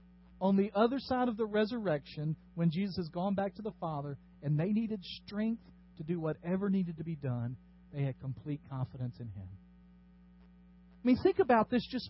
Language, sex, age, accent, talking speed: English, male, 40-59, American, 190 wpm